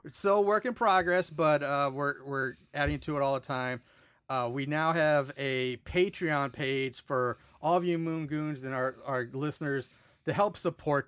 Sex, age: male, 30-49